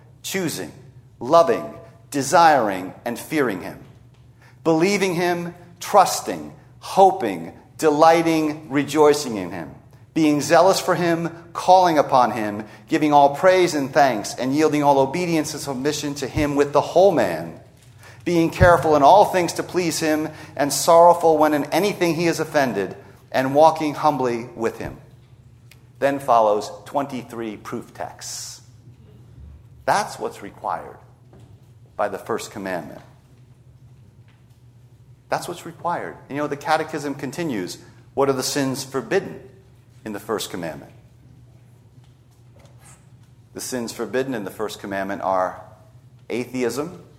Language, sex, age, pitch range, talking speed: English, male, 40-59, 120-155 Hz, 125 wpm